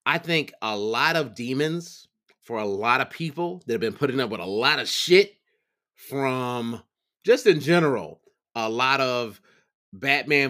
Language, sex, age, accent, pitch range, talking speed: English, male, 30-49, American, 120-150 Hz, 165 wpm